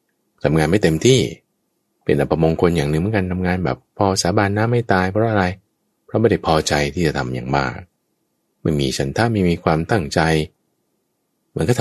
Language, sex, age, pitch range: Thai, male, 20-39, 75-110 Hz